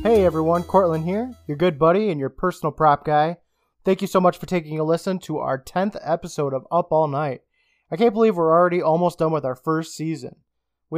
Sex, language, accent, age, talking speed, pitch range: male, English, American, 20-39, 220 wpm, 140-180 Hz